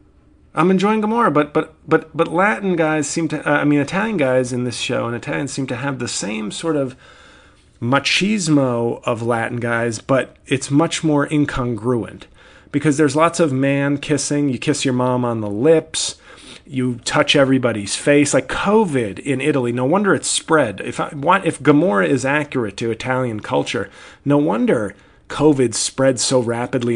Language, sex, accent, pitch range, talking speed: English, male, American, 120-150 Hz, 170 wpm